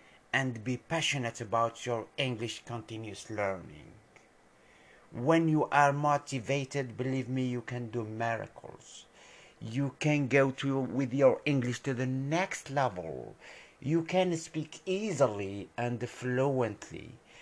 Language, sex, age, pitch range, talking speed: English, male, 50-69, 115-145 Hz, 120 wpm